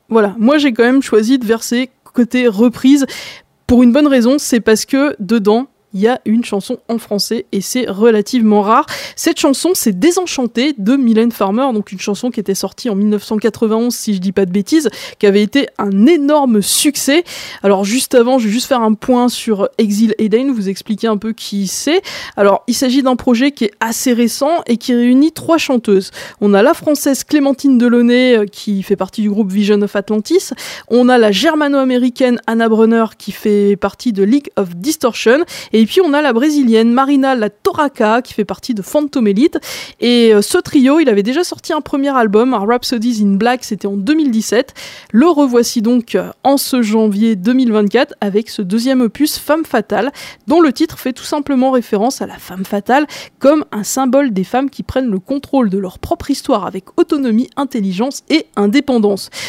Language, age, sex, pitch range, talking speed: French, 20-39, female, 215-275 Hz, 190 wpm